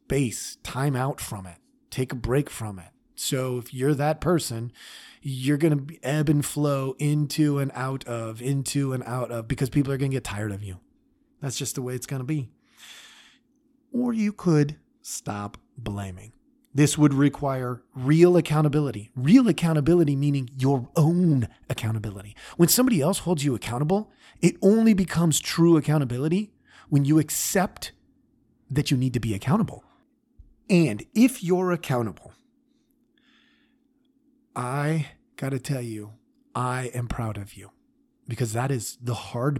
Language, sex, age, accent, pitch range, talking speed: English, male, 30-49, American, 120-170 Hz, 155 wpm